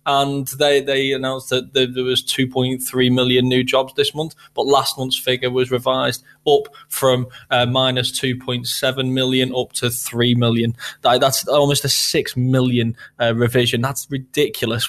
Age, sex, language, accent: 20-39, male, English, British